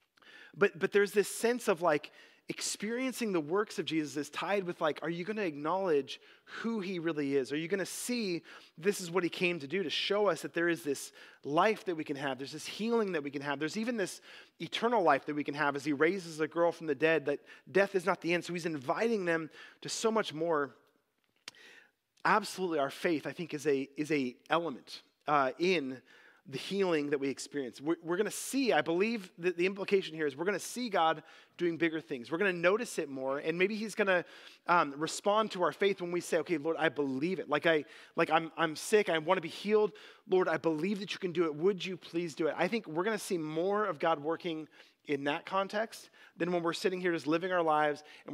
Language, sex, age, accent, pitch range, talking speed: English, male, 30-49, American, 155-195 Hz, 240 wpm